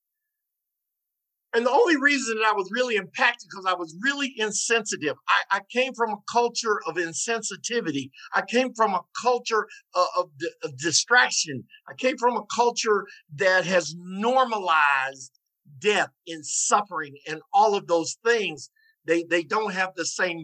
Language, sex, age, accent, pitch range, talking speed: English, male, 50-69, American, 160-230 Hz, 155 wpm